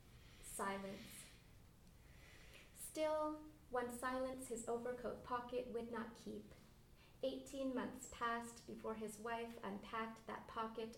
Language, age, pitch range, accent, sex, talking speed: English, 20-39, 215-245 Hz, American, female, 105 wpm